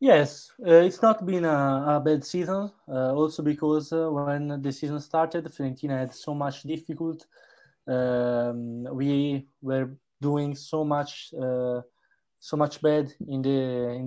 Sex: male